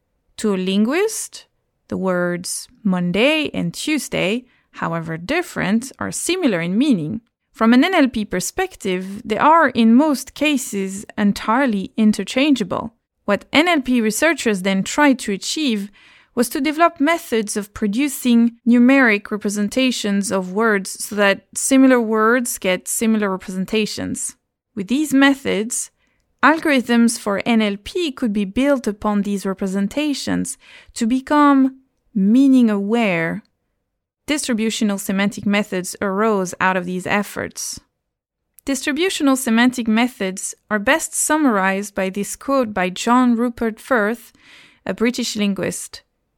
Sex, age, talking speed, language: female, 30-49, 115 wpm, English